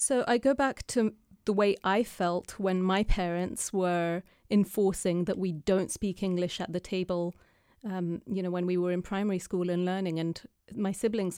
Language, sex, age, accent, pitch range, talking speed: English, female, 30-49, British, 180-225 Hz, 190 wpm